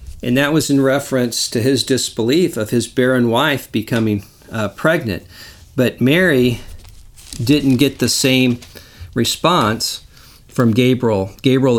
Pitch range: 110-135 Hz